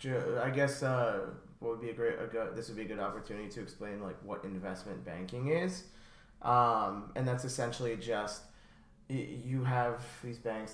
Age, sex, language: 20-39, male, English